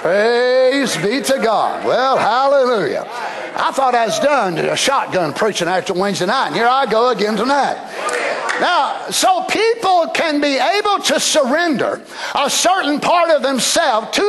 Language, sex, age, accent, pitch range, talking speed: English, male, 60-79, American, 250-330 Hz, 155 wpm